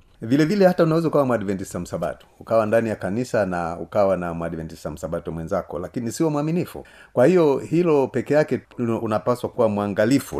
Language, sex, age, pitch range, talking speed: Swahili, male, 40-59, 95-130 Hz, 160 wpm